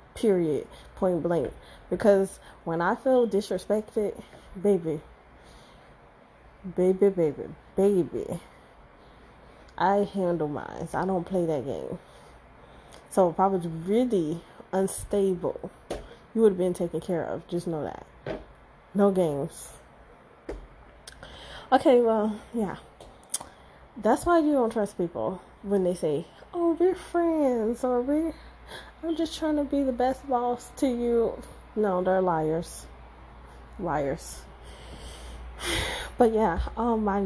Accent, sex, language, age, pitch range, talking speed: American, female, English, 20-39, 155-220 Hz, 120 wpm